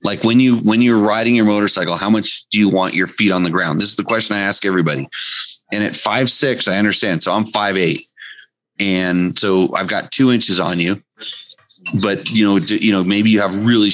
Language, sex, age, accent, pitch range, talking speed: English, male, 30-49, American, 95-115 Hz, 225 wpm